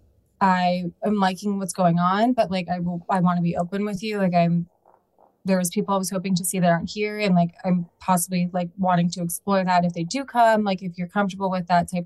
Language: English